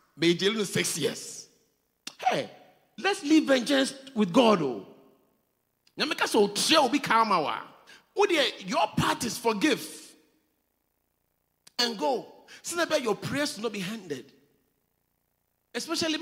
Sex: male